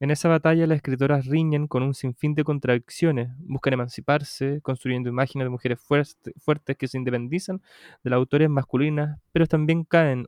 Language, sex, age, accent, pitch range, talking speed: Spanish, male, 20-39, Argentinian, 125-145 Hz, 165 wpm